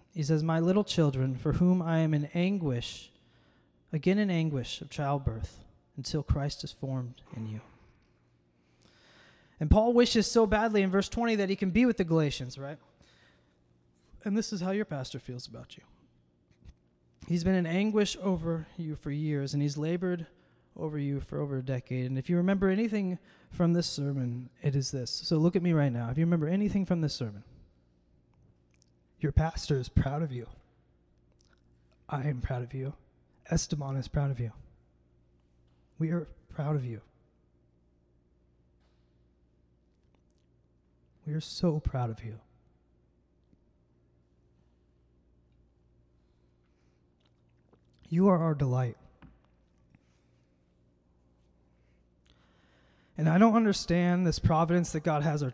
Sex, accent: male, American